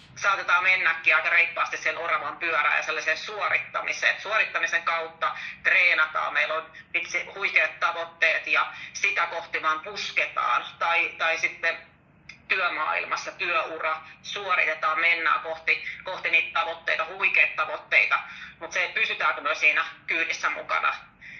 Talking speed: 115 wpm